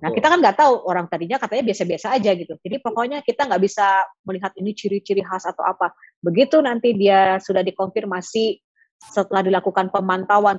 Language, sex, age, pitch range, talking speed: Indonesian, female, 20-39, 180-230 Hz, 170 wpm